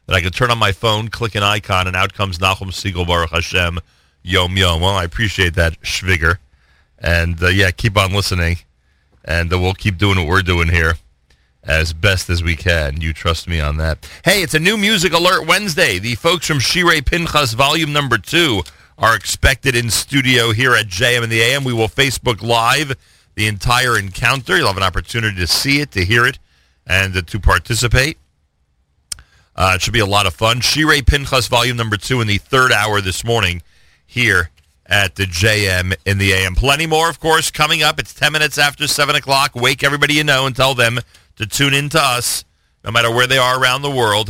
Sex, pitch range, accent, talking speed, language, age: male, 90-125 Hz, American, 205 wpm, English, 40-59